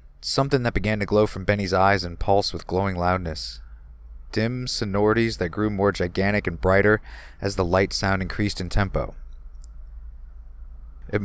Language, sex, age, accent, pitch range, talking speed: English, male, 30-49, American, 65-100 Hz, 155 wpm